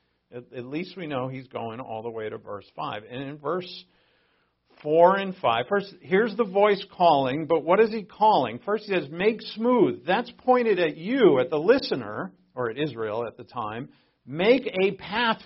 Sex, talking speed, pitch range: male, 185 wpm, 120-185 Hz